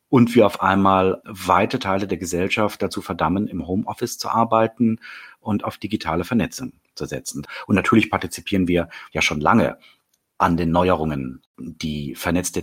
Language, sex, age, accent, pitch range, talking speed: German, male, 40-59, German, 90-130 Hz, 150 wpm